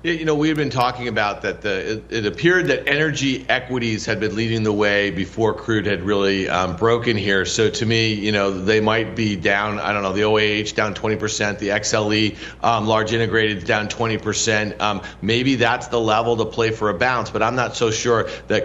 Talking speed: 215 wpm